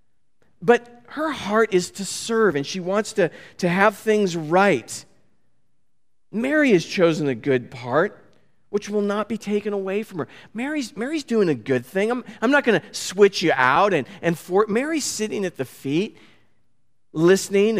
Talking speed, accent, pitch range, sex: 170 wpm, American, 135-215 Hz, male